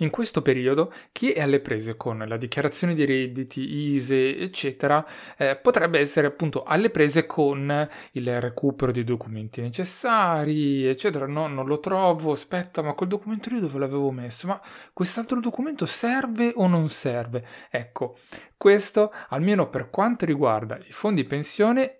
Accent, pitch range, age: native, 130-180 Hz, 30-49